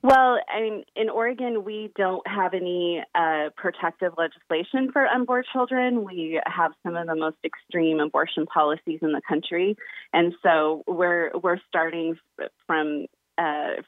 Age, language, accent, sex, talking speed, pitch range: 30-49, English, American, female, 145 wpm, 160-185 Hz